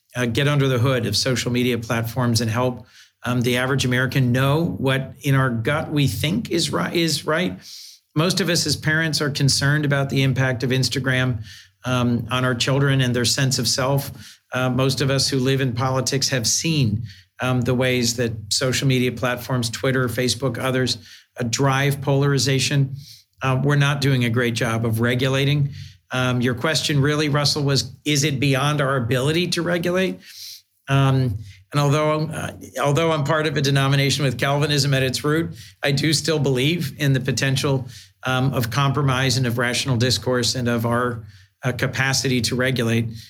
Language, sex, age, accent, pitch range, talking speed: English, male, 50-69, American, 120-140 Hz, 175 wpm